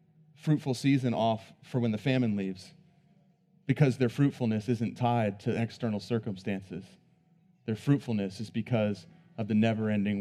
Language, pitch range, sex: English, 110-145 Hz, male